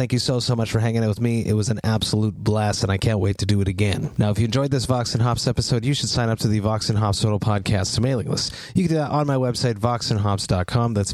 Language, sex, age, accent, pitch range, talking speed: English, male, 30-49, American, 110-130 Hz, 295 wpm